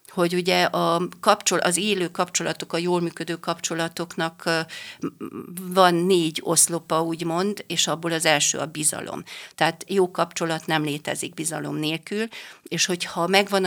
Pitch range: 160-185 Hz